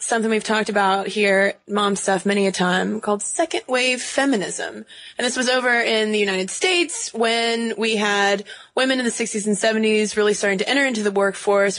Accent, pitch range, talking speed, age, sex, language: American, 185-225 Hz, 195 wpm, 20-39, female, English